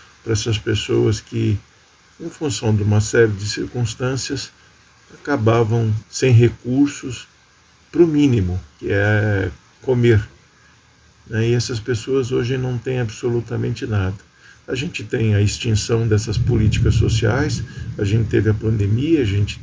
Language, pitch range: Portuguese, 110-135 Hz